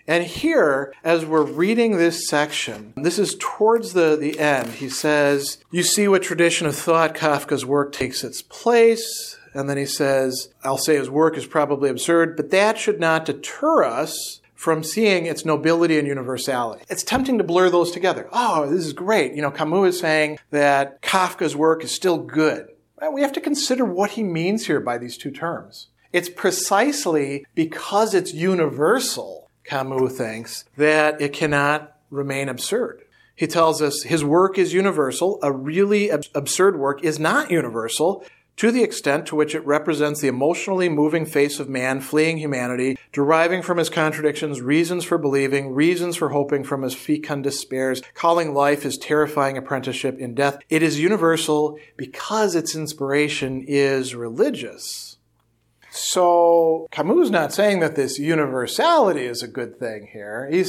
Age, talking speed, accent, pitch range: 50-69, 165 wpm, American, 140-175 Hz